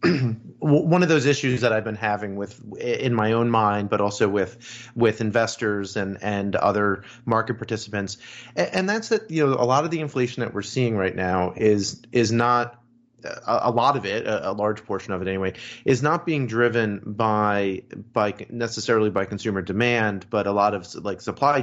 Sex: male